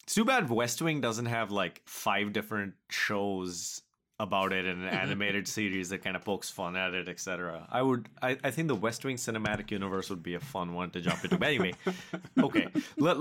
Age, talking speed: 20-39, 215 wpm